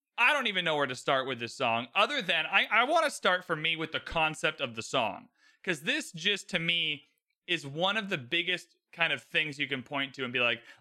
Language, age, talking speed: English, 30-49, 245 wpm